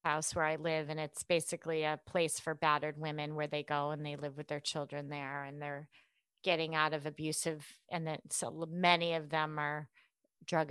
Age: 30-49